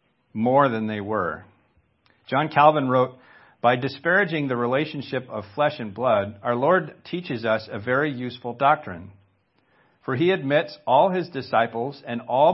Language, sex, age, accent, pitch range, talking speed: English, male, 50-69, American, 115-150 Hz, 150 wpm